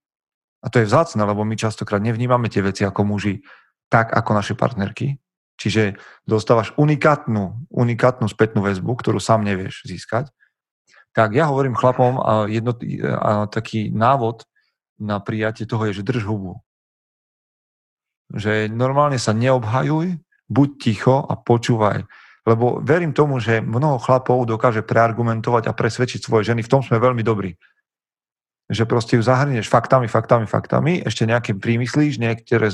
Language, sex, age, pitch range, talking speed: Slovak, male, 40-59, 105-125 Hz, 140 wpm